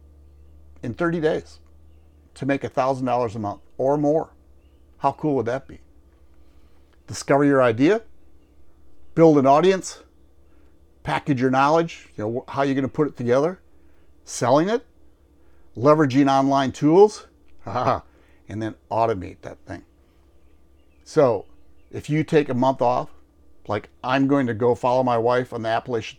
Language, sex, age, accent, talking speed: English, male, 50-69, American, 145 wpm